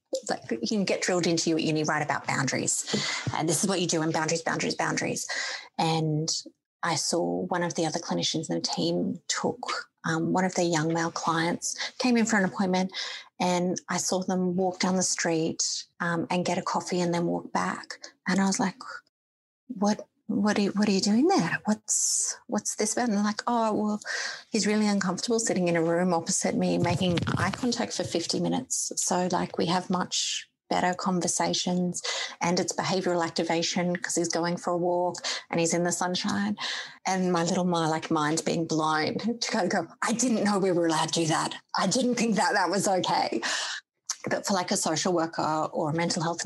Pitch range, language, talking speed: 170-205 Hz, English, 205 wpm